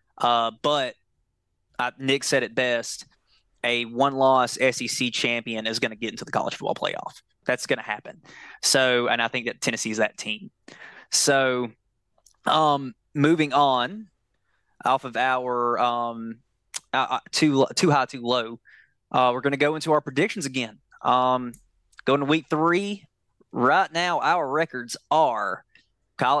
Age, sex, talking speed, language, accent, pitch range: 20-39, male, 155 wpm, English, American, 125-155 Hz